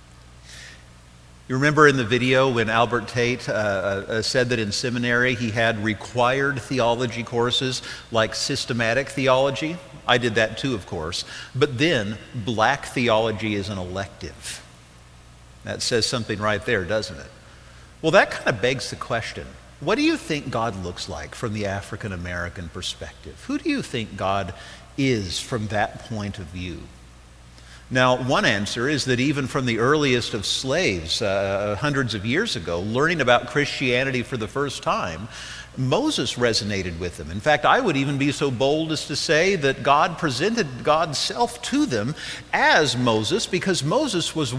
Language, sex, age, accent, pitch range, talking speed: English, male, 50-69, American, 100-145 Hz, 165 wpm